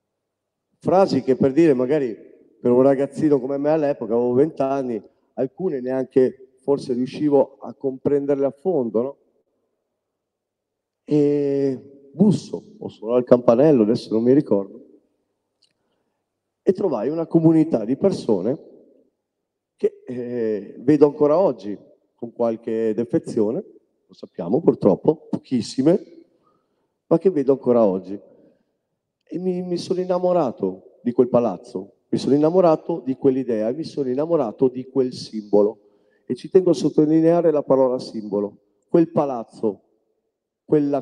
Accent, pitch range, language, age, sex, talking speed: native, 120-155 Hz, Italian, 40-59, male, 125 wpm